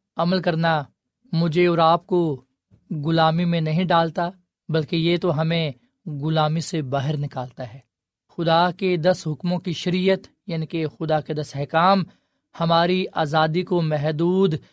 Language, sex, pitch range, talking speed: Urdu, male, 150-185 Hz, 145 wpm